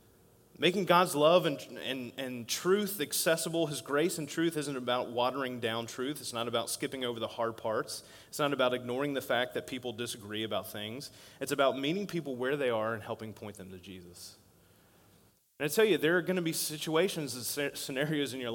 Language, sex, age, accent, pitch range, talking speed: English, male, 30-49, American, 110-150 Hz, 205 wpm